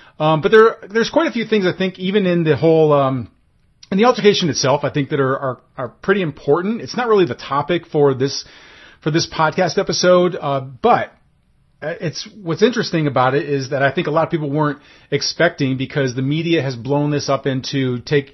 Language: English